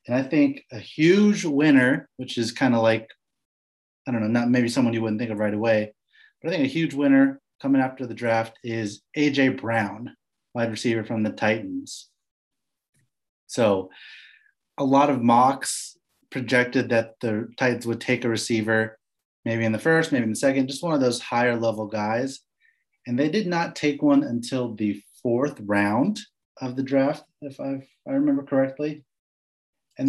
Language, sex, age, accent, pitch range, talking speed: English, male, 30-49, American, 115-140 Hz, 175 wpm